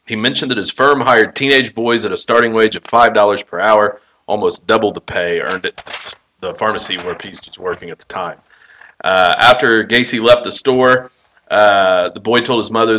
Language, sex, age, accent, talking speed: English, male, 30-49, American, 200 wpm